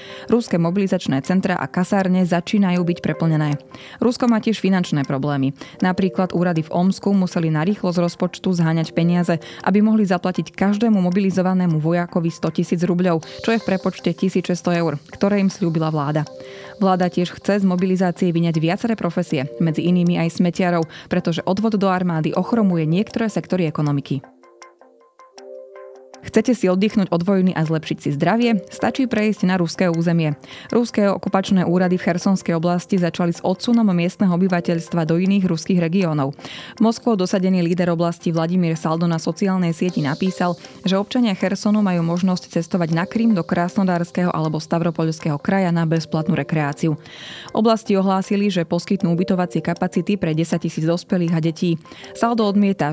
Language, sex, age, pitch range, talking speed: Slovak, female, 20-39, 165-195 Hz, 150 wpm